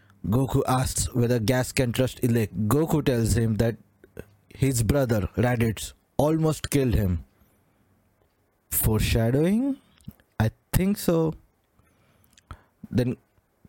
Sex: male